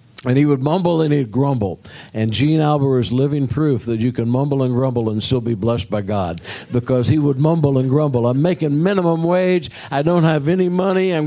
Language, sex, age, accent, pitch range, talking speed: English, male, 60-79, American, 120-160 Hz, 220 wpm